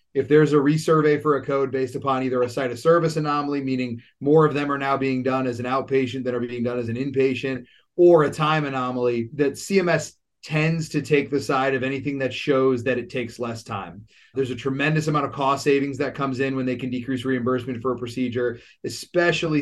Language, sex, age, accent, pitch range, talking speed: English, male, 30-49, American, 125-150 Hz, 220 wpm